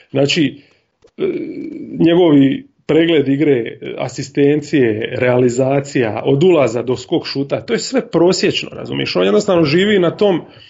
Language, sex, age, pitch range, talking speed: Croatian, male, 30-49, 140-195 Hz, 120 wpm